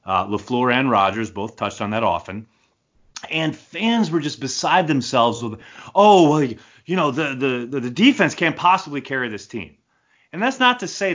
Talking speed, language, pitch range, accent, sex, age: 185 wpm, English, 110-160 Hz, American, male, 30-49